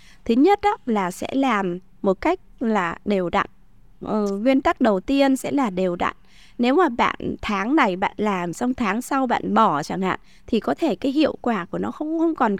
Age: 20-39